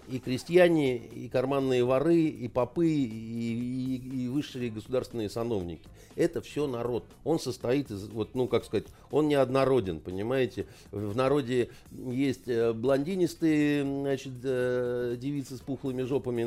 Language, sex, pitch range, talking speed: Russian, male, 115-140 Hz, 125 wpm